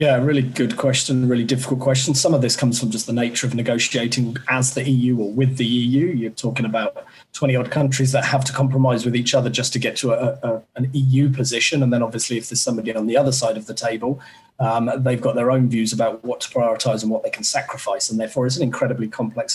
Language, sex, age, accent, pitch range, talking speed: English, male, 30-49, British, 115-135 Hz, 240 wpm